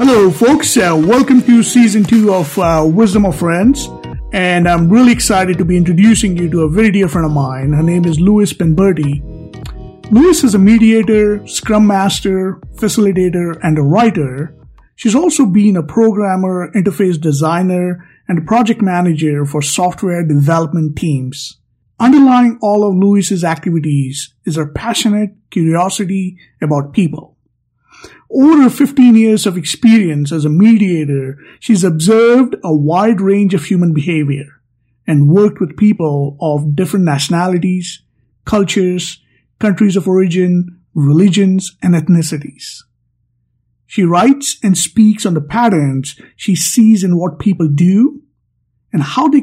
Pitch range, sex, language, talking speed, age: 155-210 Hz, male, English, 135 wpm, 50-69